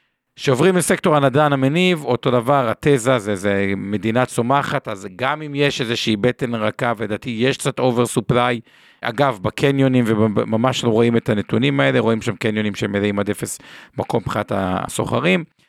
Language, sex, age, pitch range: Hebrew, male, 50-69, 110-140 Hz